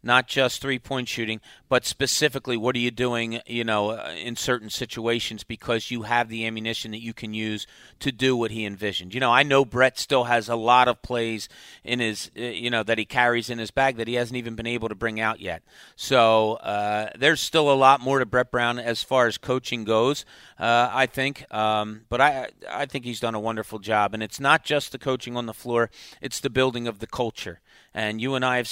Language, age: English, 40-59